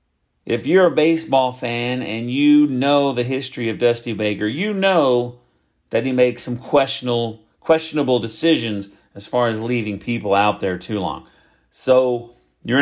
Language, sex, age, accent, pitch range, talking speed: English, male, 40-59, American, 115-155 Hz, 155 wpm